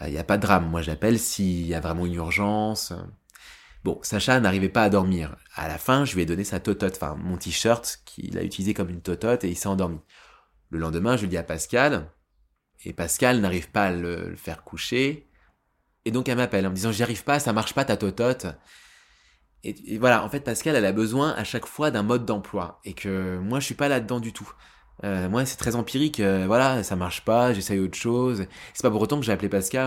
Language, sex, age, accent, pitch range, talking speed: French, male, 20-39, French, 95-125 Hz, 240 wpm